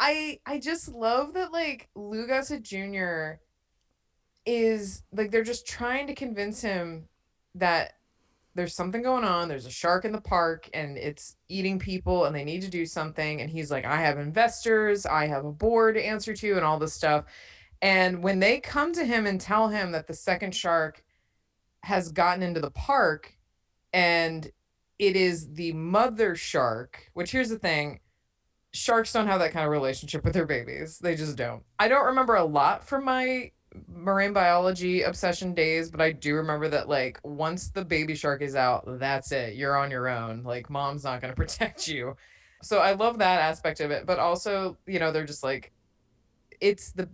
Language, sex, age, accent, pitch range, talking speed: English, female, 20-39, American, 155-205 Hz, 185 wpm